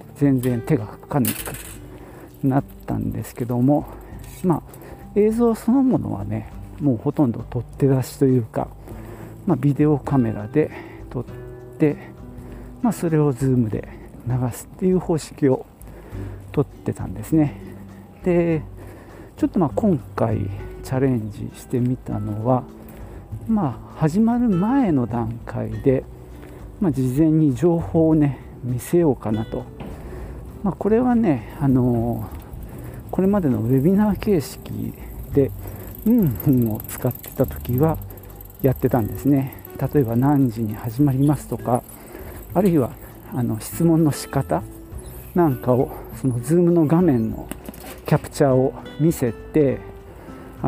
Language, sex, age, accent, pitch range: Japanese, male, 50-69, native, 110-150 Hz